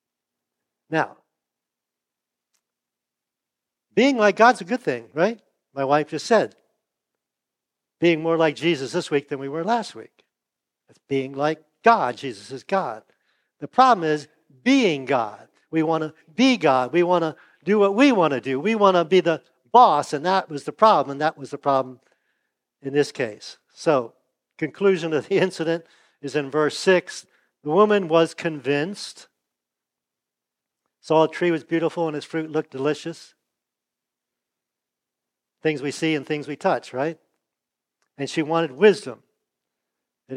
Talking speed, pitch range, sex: 155 wpm, 135-170 Hz, male